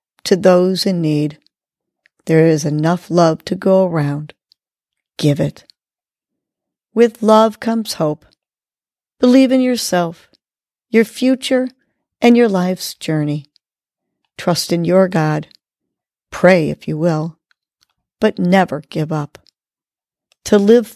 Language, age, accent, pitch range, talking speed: English, 50-69, American, 165-215 Hz, 115 wpm